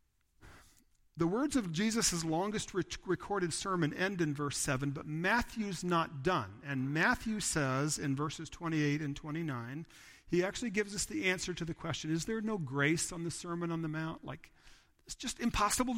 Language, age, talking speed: English, 50-69, 175 wpm